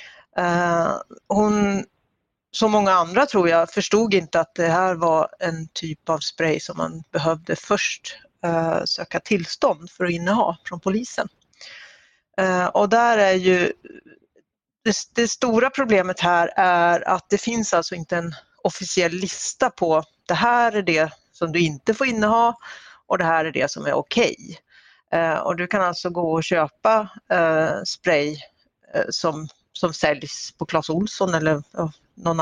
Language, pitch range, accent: Swedish, 165-205 Hz, native